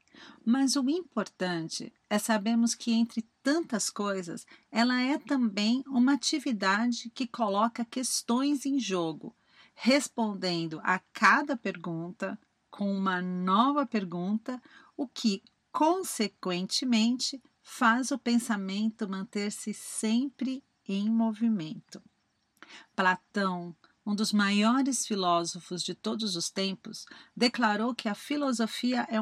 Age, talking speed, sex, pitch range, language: 40-59, 105 wpm, female, 195-255 Hz, Portuguese